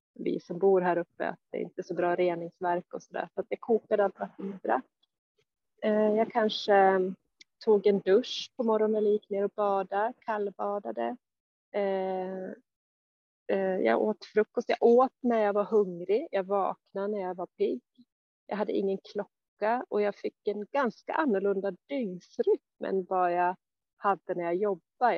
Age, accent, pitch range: 30-49, native, 180-215 Hz